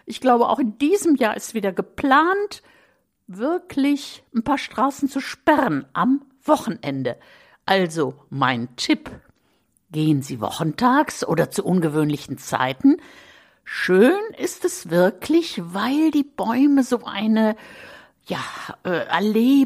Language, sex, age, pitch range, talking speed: German, female, 60-79, 170-275 Hz, 115 wpm